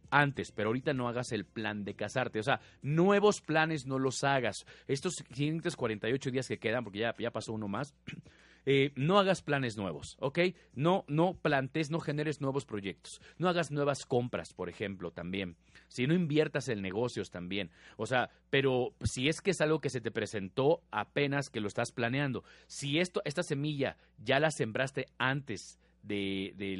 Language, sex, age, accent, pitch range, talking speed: Spanish, male, 40-59, Mexican, 115-160 Hz, 180 wpm